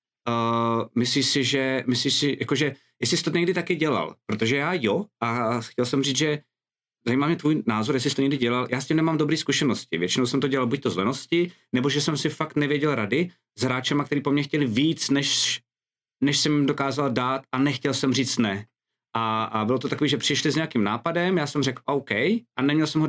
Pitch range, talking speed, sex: 120-145 Hz, 225 wpm, male